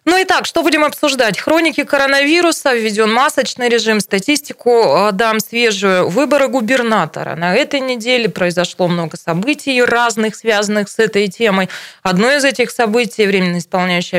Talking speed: 140 wpm